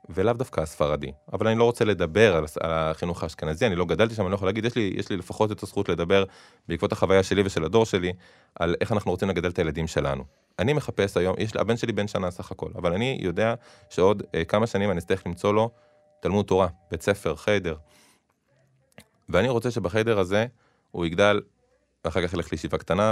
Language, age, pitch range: Hebrew, 20-39, 80-105 Hz